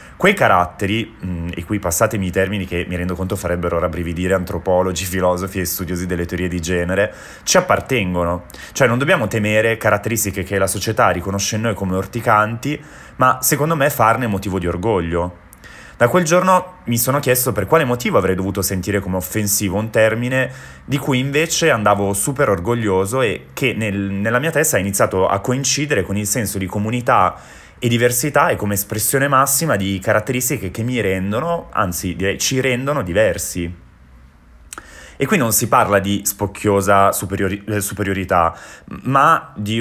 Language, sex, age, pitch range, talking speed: Italian, male, 20-39, 95-125 Hz, 160 wpm